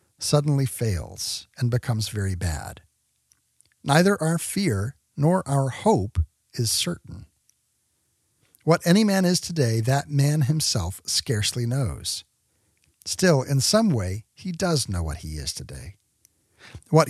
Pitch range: 105-150 Hz